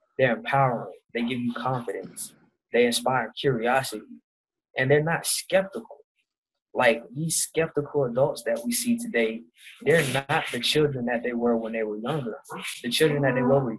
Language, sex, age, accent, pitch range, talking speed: English, male, 20-39, American, 120-155 Hz, 160 wpm